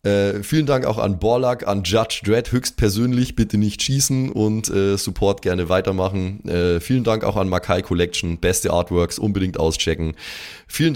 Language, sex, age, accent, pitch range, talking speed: German, male, 20-39, German, 90-125 Hz, 165 wpm